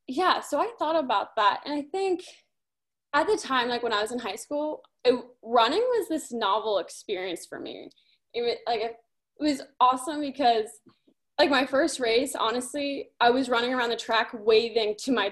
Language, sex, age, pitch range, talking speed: English, female, 10-29, 225-295 Hz, 175 wpm